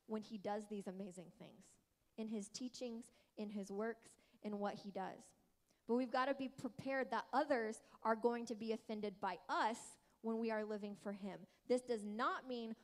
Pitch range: 210-245 Hz